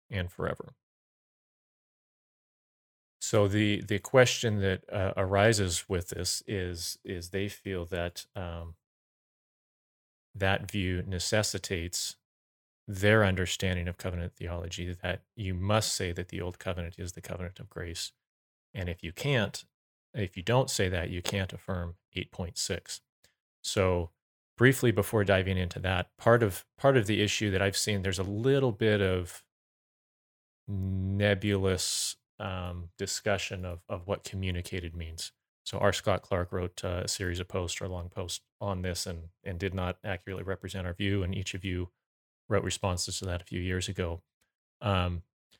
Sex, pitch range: male, 90-105 Hz